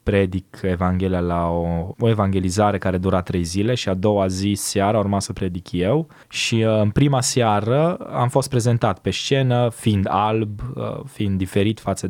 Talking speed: 165 wpm